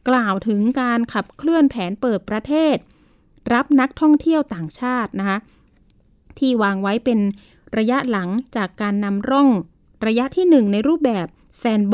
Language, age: Thai, 20-39